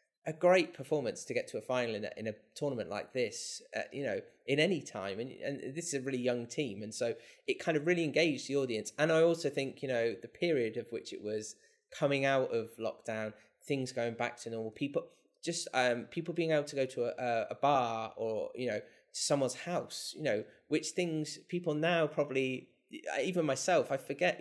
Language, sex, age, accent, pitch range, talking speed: English, male, 20-39, British, 125-160 Hz, 215 wpm